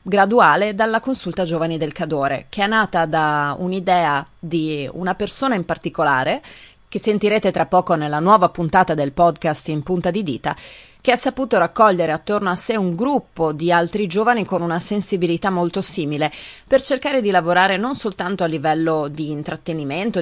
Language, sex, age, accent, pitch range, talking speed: Italian, female, 30-49, native, 165-205 Hz, 165 wpm